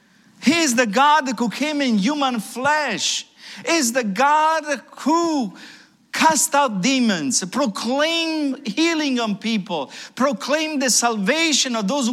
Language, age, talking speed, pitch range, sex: English, 50-69, 130 wpm, 195-260 Hz, male